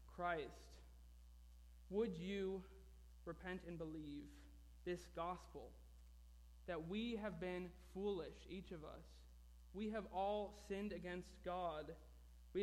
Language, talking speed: English, 110 wpm